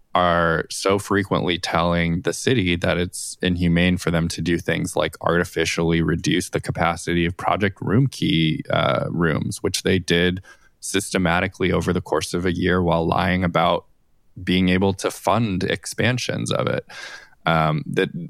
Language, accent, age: English, American, 20-39